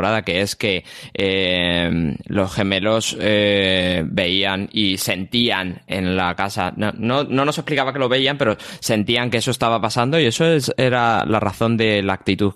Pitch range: 95-120 Hz